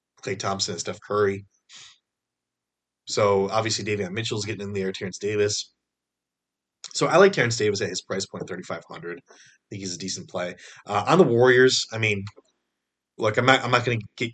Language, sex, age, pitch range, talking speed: English, male, 20-39, 95-125 Hz, 185 wpm